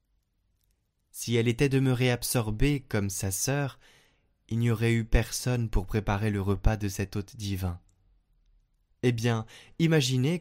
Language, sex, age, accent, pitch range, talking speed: French, male, 20-39, French, 105-130 Hz, 140 wpm